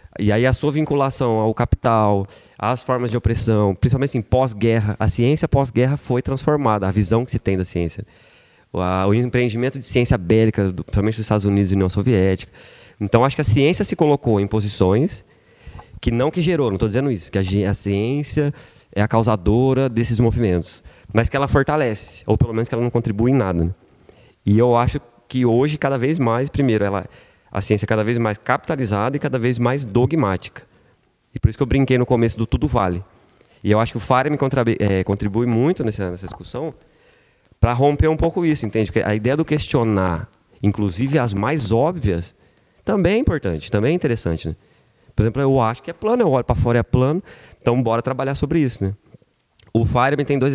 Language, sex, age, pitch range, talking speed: Portuguese, male, 20-39, 105-130 Hz, 200 wpm